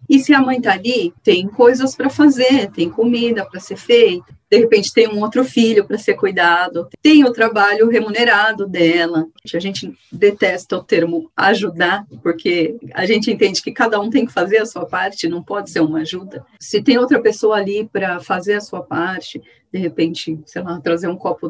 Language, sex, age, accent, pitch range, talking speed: Portuguese, female, 40-59, Brazilian, 175-235 Hz, 195 wpm